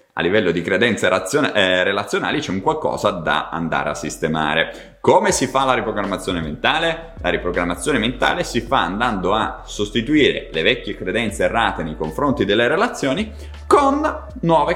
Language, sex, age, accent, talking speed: Italian, male, 30-49, native, 150 wpm